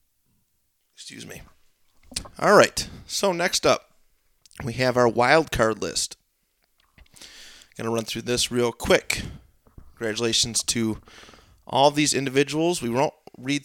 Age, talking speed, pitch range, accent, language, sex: 30-49, 120 wpm, 105-130 Hz, American, English, male